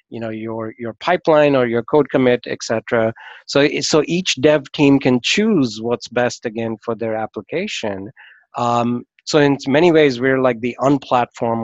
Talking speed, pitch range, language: 170 wpm, 115-135 Hz, English